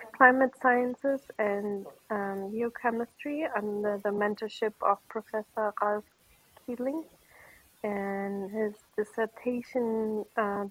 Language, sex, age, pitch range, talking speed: English, female, 30-49, 200-225 Hz, 90 wpm